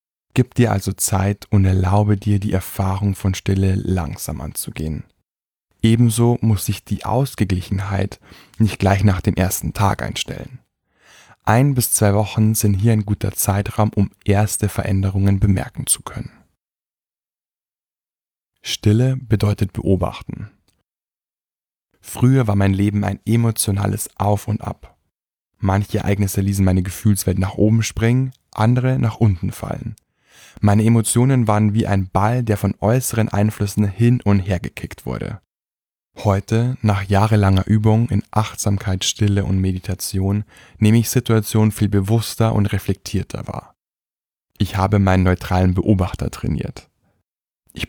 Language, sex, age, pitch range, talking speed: German, male, 10-29, 95-110 Hz, 130 wpm